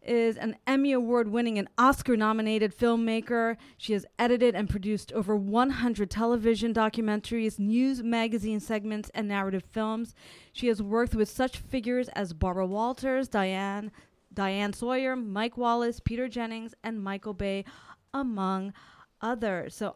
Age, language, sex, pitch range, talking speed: 30-49, English, female, 195-235 Hz, 130 wpm